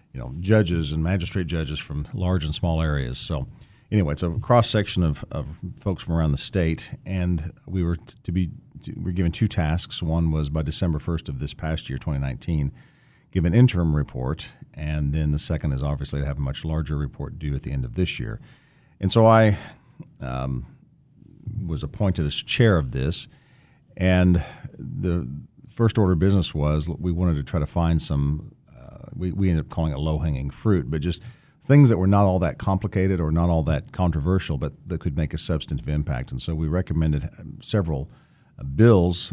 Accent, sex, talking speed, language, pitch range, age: American, male, 195 wpm, English, 75-95 Hz, 40-59